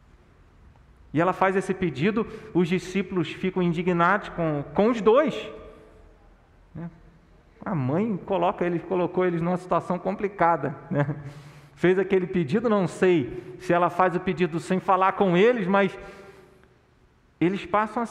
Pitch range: 150-210 Hz